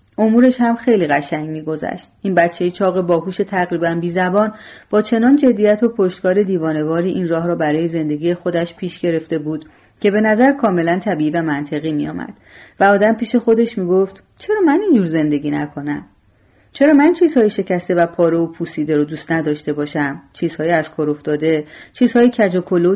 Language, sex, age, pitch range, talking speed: Persian, female, 30-49, 155-210 Hz, 165 wpm